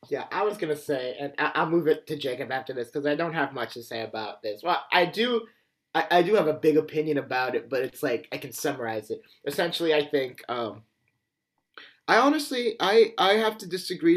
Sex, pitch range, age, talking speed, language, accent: male, 135-170 Hz, 30-49, 225 wpm, English, American